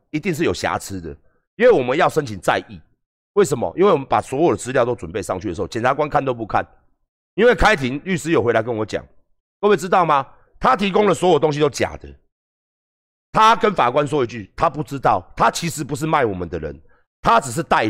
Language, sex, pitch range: Chinese, male, 135-215 Hz